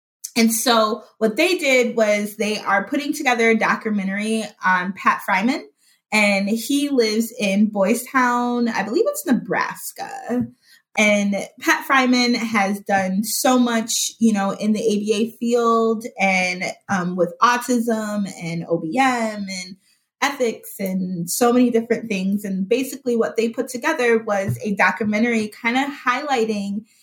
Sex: female